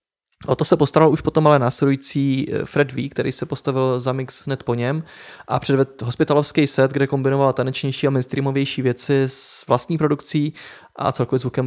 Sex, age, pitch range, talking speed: male, 20-39, 130-150 Hz, 175 wpm